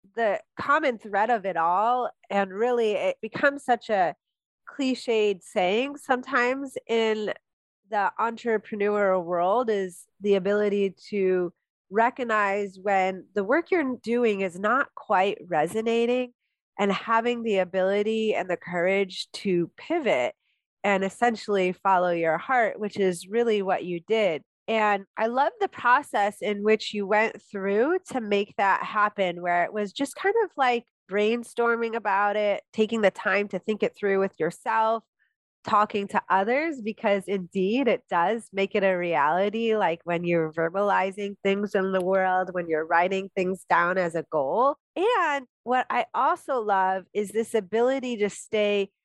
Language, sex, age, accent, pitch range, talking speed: English, female, 30-49, American, 190-235 Hz, 150 wpm